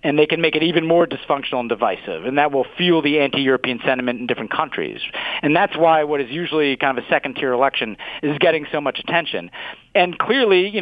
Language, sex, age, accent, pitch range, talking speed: English, male, 40-59, American, 130-160 Hz, 215 wpm